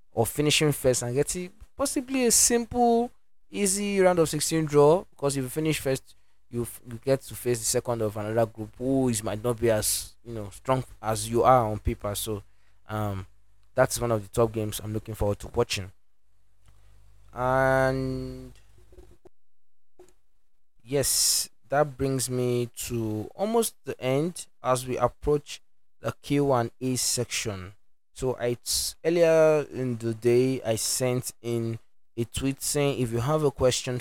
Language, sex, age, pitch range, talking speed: English, male, 20-39, 105-135 Hz, 160 wpm